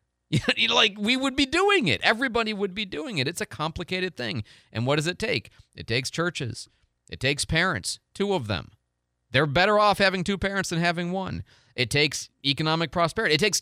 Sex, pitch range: male, 120-185 Hz